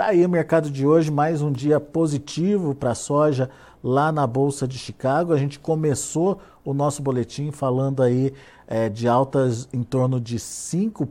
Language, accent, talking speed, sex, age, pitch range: Portuguese, Brazilian, 180 wpm, male, 50-69, 130-160 Hz